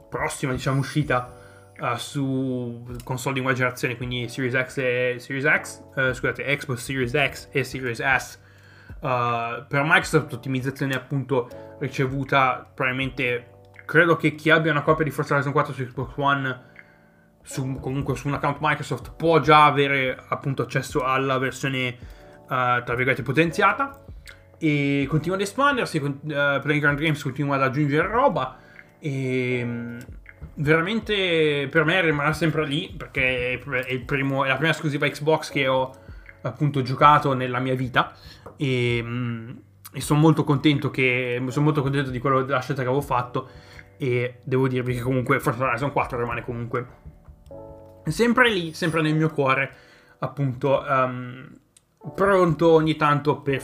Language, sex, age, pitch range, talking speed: Italian, male, 20-39, 125-150 Hz, 150 wpm